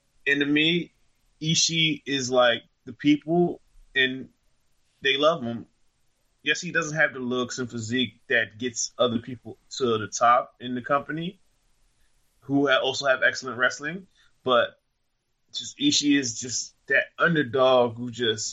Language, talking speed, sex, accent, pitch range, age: English, 145 wpm, male, American, 120-150 Hz, 20-39